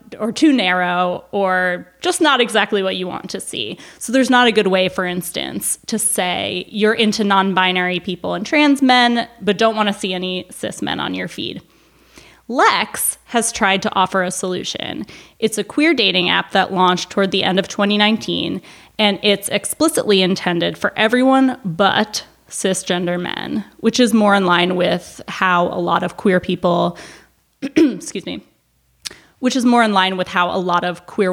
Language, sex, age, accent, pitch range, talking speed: English, female, 20-39, American, 185-230 Hz, 180 wpm